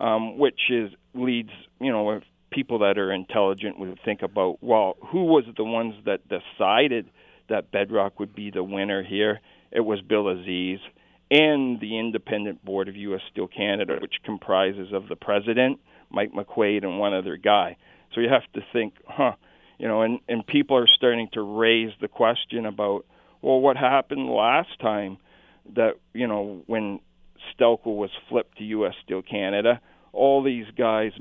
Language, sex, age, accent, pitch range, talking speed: English, male, 50-69, American, 105-130 Hz, 170 wpm